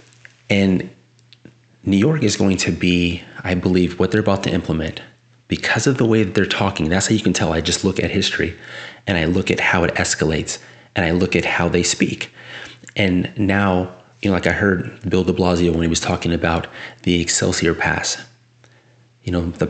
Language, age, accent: English, 30-49, American